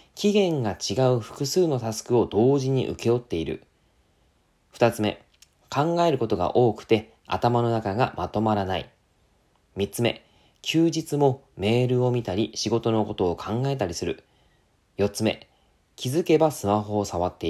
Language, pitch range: Japanese, 100-145 Hz